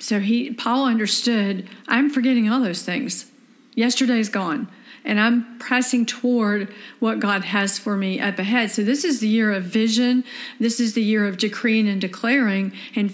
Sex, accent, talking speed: female, American, 175 wpm